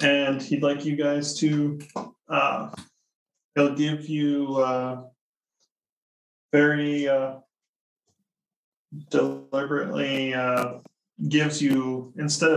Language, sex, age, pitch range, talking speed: English, male, 20-39, 130-155 Hz, 85 wpm